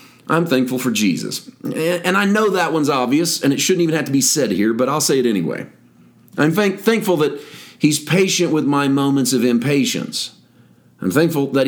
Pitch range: 115-145 Hz